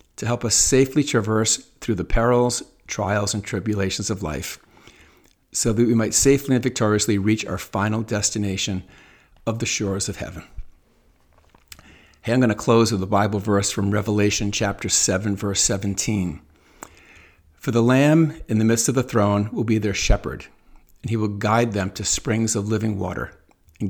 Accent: American